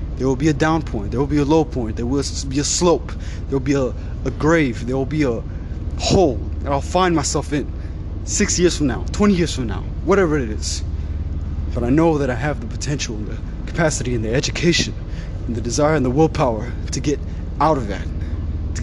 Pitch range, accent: 80-125 Hz, American